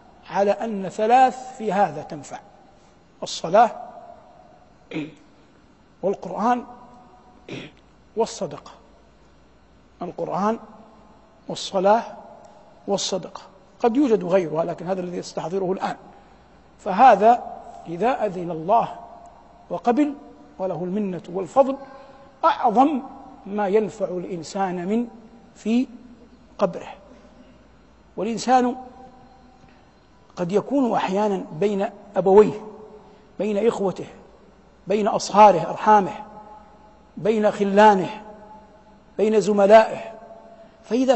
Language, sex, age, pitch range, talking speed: Arabic, male, 50-69, 190-245 Hz, 75 wpm